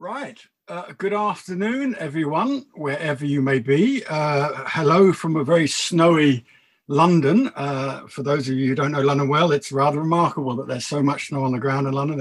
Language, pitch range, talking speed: English, 135-165 Hz, 190 wpm